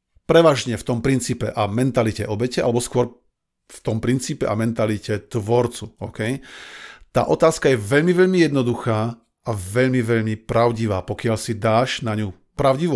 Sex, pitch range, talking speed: male, 110-135 Hz, 145 wpm